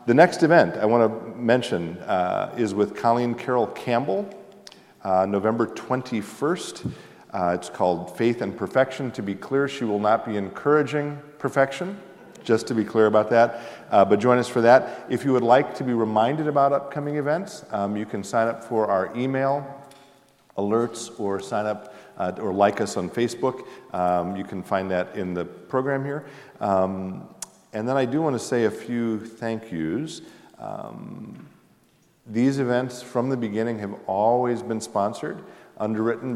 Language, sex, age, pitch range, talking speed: English, male, 50-69, 100-125 Hz, 170 wpm